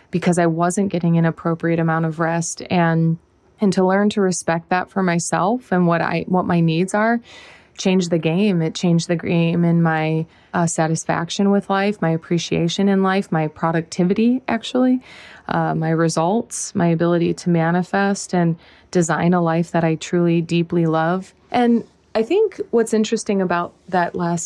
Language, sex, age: English, female, 20-39